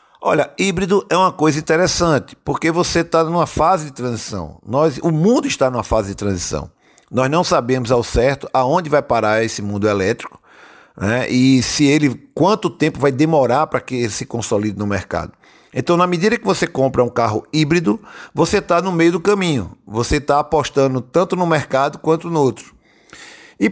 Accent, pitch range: Brazilian, 125-175 Hz